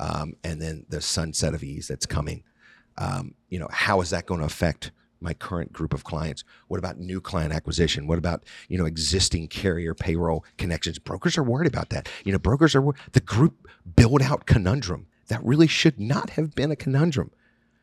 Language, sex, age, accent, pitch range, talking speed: English, male, 40-59, American, 90-120 Hz, 195 wpm